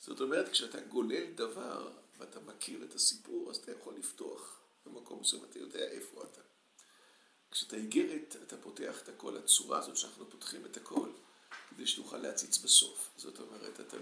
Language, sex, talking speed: Hebrew, male, 165 wpm